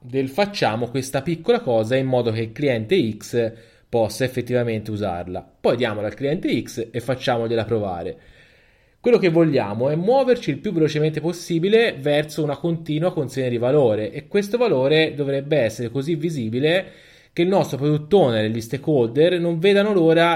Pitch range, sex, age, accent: 110-150 Hz, male, 20-39, native